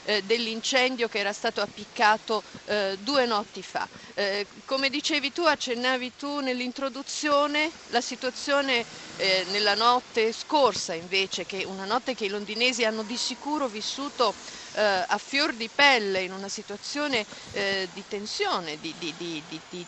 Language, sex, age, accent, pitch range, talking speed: Italian, female, 50-69, native, 195-250 Hz, 145 wpm